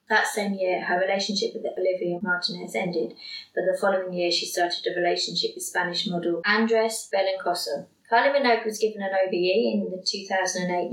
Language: English